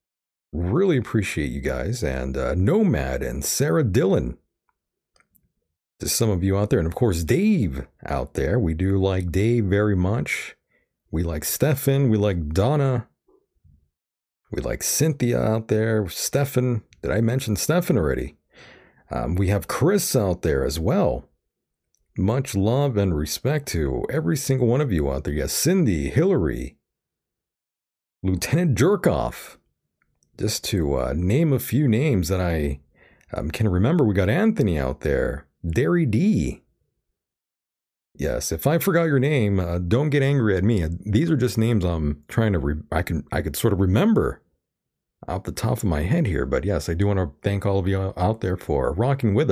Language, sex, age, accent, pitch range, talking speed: English, male, 40-59, American, 80-125 Hz, 165 wpm